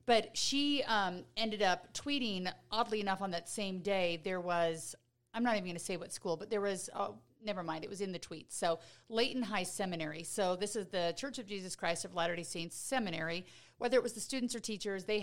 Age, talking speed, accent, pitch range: 40-59, 225 wpm, American, 175-215 Hz